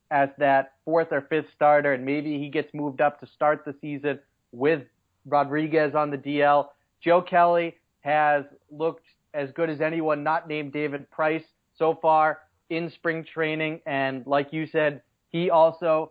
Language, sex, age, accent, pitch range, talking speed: English, male, 30-49, American, 145-170 Hz, 165 wpm